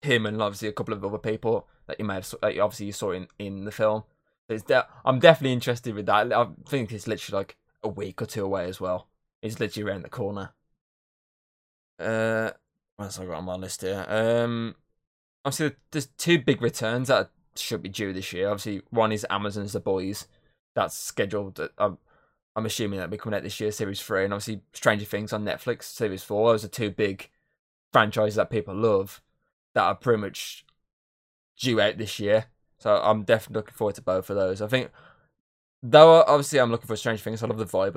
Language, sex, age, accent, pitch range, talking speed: English, male, 20-39, British, 100-115 Hz, 205 wpm